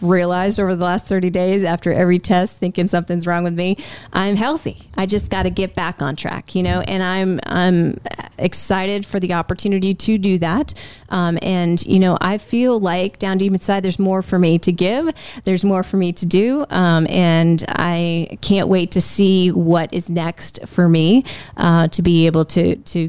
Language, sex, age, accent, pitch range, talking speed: English, female, 30-49, American, 165-190 Hz, 200 wpm